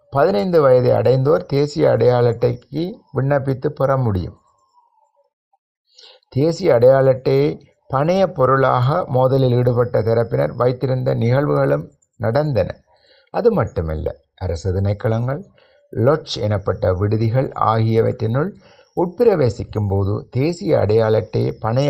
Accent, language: native, Tamil